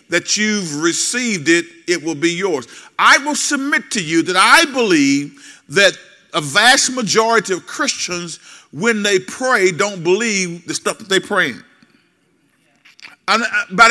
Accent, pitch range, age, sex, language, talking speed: American, 180-240 Hz, 50-69, male, English, 140 wpm